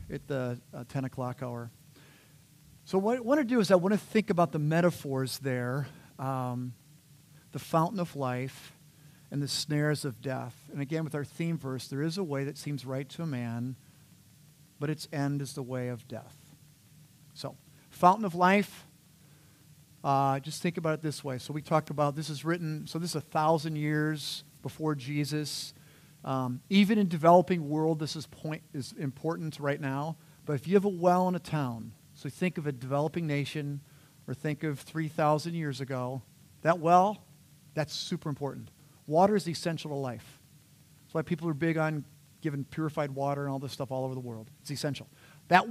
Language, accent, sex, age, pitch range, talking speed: English, American, male, 50-69, 140-160 Hz, 190 wpm